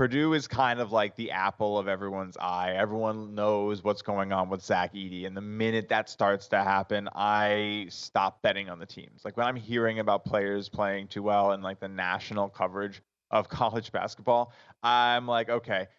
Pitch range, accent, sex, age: 95-110 Hz, American, male, 20-39